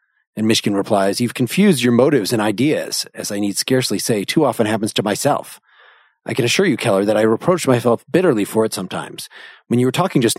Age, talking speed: 40-59, 215 wpm